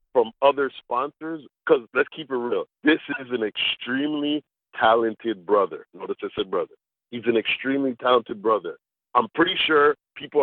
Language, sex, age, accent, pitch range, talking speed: English, male, 40-59, American, 115-180 Hz, 155 wpm